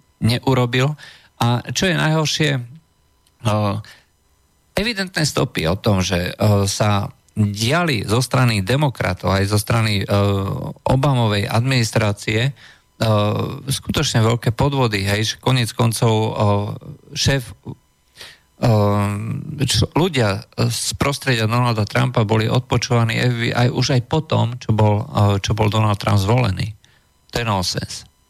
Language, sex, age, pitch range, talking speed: Slovak, male, 40-59, 105-130 Hz, 120 wpm